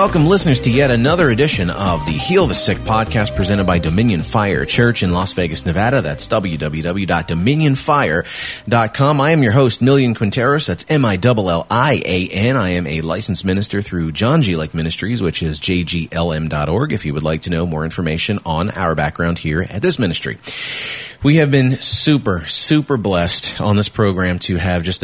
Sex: male